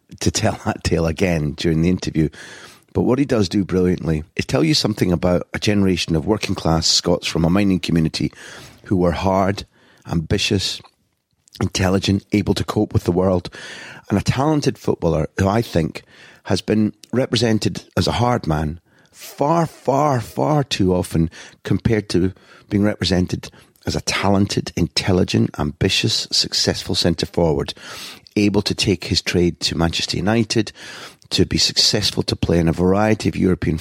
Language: English